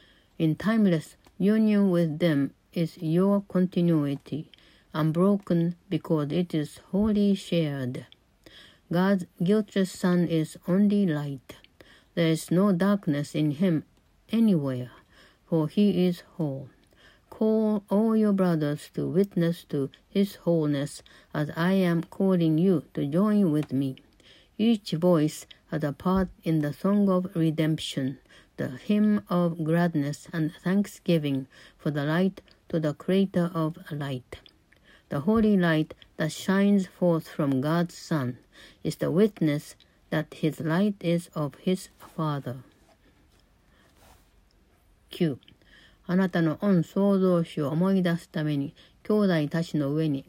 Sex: female